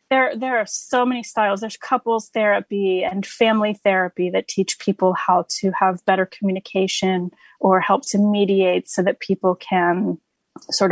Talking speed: 160 wpm